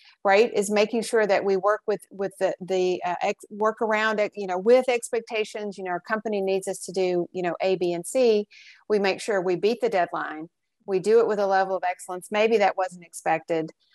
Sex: female